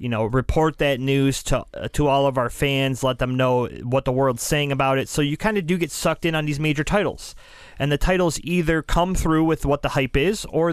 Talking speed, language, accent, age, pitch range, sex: 250 wpm, English, American, 30-49, 130-165 Hz, male